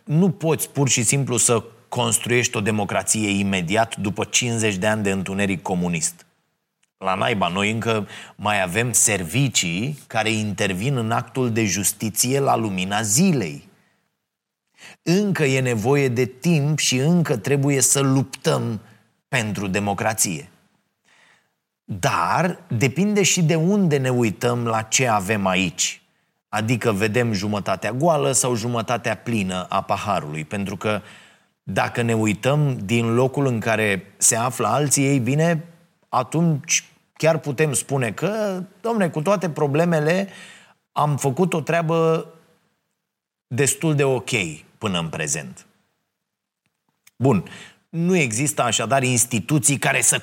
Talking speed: 125 wpm